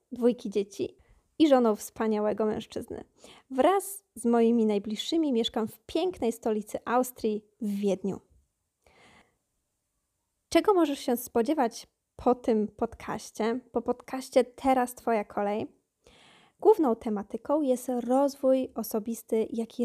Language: Polish